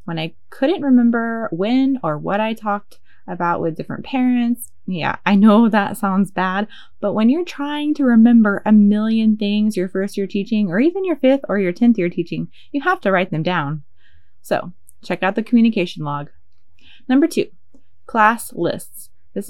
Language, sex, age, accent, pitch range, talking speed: English, female, 20-39, American, 170-225 Hz, 175 wpm